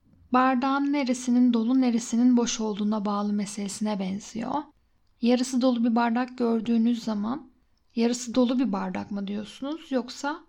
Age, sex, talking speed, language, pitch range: 10-29, female, 125 wpm, Turkish, 225-270 Hz